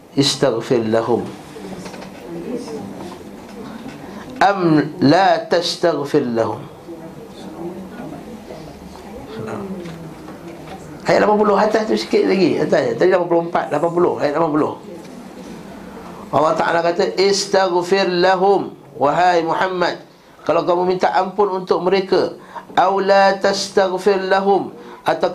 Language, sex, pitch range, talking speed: Malay, male, 155-190 Hz, 85 wpm